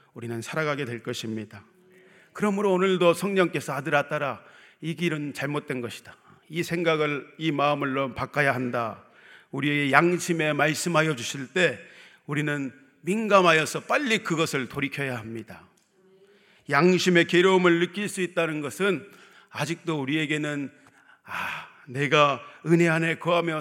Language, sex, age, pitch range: Korean, male, 40-59, 145-195 Hz